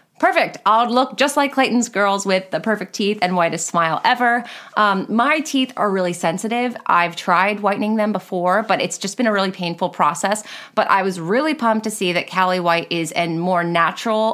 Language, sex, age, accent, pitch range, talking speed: English, female, 30-49, American, 185-255 Hz, 200 wpm